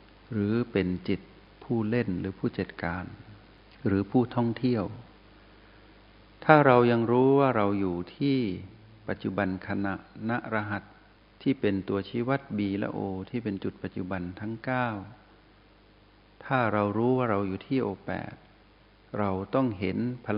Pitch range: 100-115 Hz